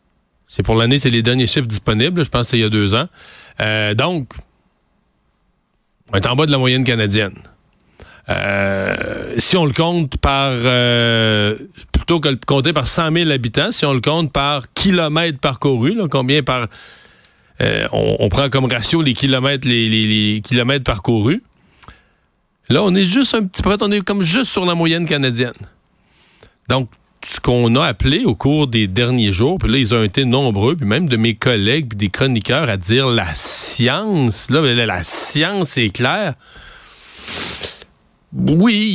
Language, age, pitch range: French, 40-59, 110-150 Hz